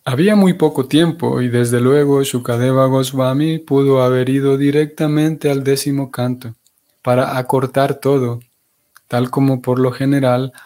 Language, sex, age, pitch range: Spanish, male, 20-39, 120-145 Hz